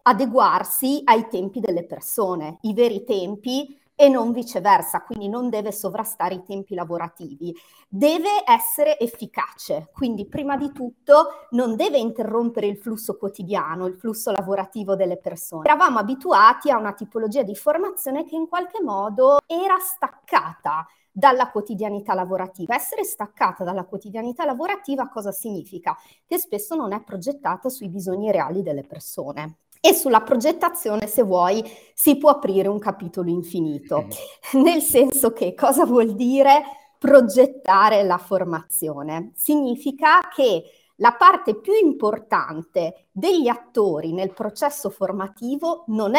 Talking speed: 130 wpm